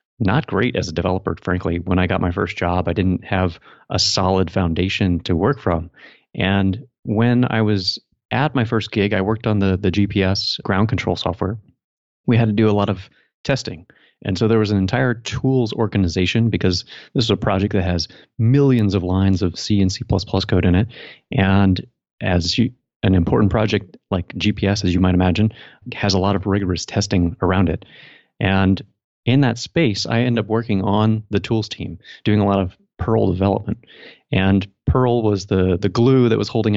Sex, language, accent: male, English, American